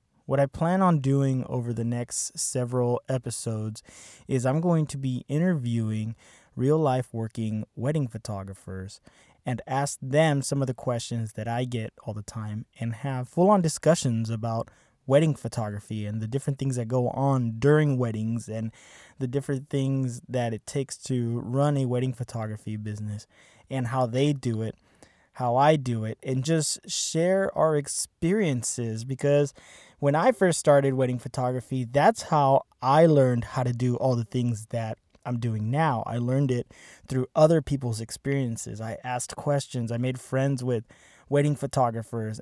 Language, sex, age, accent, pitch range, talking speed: English, male, 20-39, American, 115-140 Hz, 165 wpm